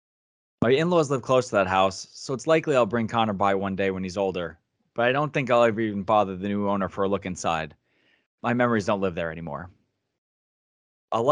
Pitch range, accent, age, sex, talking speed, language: 95-115 Hz, American, 20-39, male, 215 wpm, English